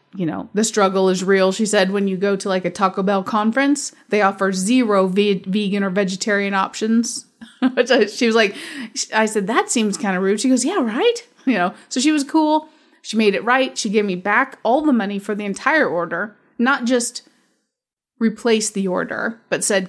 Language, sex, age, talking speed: English, female, 30-49, 200 wpm